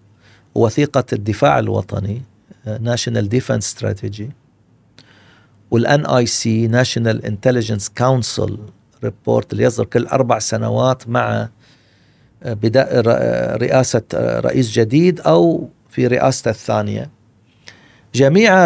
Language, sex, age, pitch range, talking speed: Arabic, male, 50-69, 110-135 Hz, 80 wpm